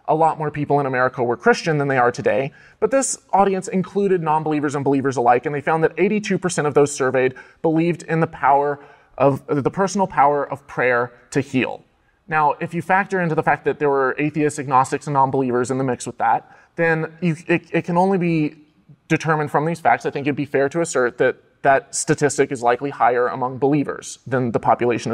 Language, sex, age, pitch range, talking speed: English, male, 20-39, 140-180 Hz, 210 wpm